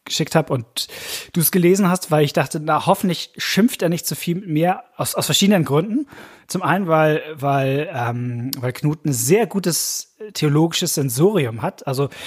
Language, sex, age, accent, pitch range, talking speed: German, male, 30-49, German, 145-190 Hz, 185 wpm